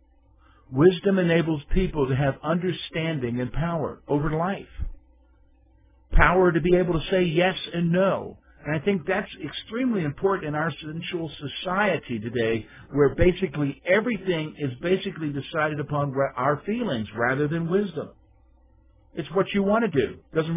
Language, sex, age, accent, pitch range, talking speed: English, male, 50-69, American, 135-190 Hz, 145 wpm